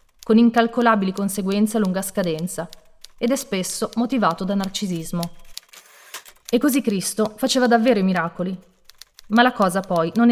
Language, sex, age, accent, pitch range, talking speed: Italian, female, 30-49, native, 175-230 Hz, 140 wpm